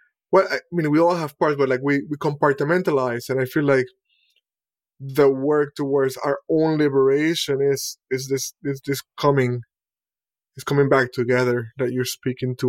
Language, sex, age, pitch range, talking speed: English, male, 20-39, 125-150 Hz, 170 wpm